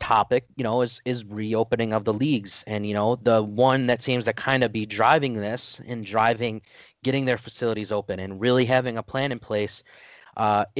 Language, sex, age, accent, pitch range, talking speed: English, male, 30-49, American, 110-125 Hz, 200 wpm